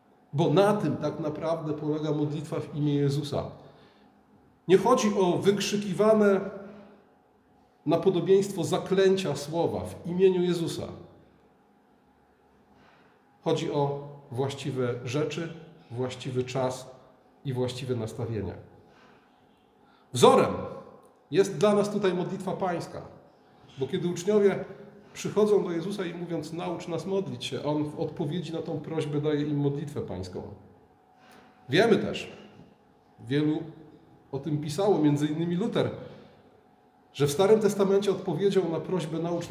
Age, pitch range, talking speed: 40-59, 145-195 Hz, 115 wpm